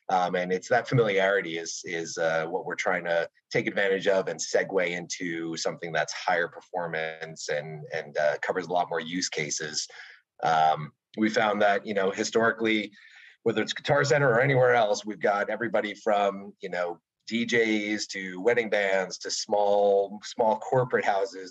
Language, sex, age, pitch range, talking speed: English, male, 30-49, 95-125 Hz, 165 wpm